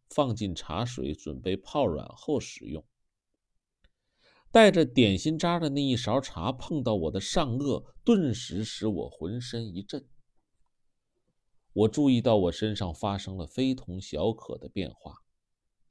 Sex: male